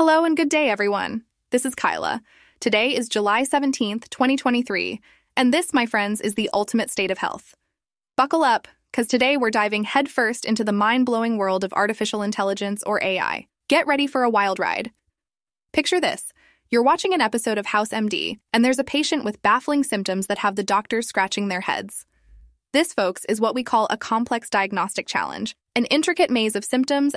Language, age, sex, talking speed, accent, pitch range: English, 10-29, female, 185 wpm, American, 205-260 Hz